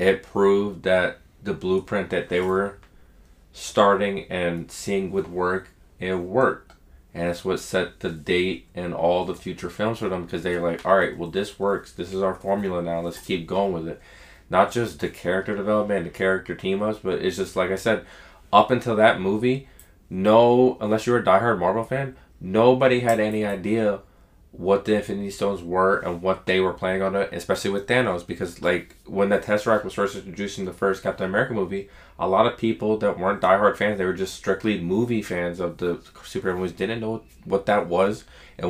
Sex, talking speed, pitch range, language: male, 205 wpm, 90-110 Hz, English